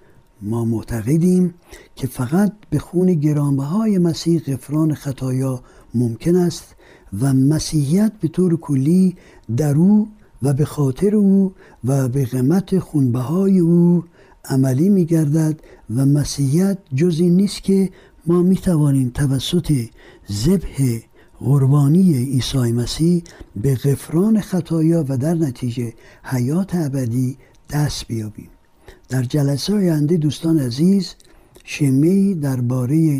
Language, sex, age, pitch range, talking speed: Persian, male, 60-79, 125-170 Hz, 110 wpm